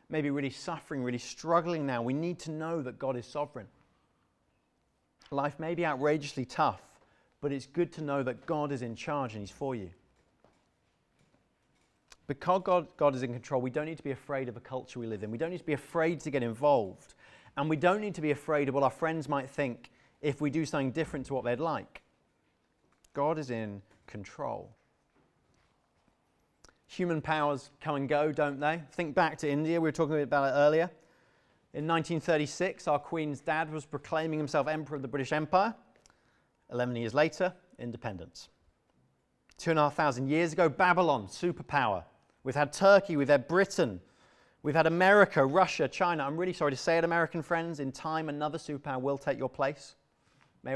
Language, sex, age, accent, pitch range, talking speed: English, male, 30-49, British, 135-165 Hz, 185 wpm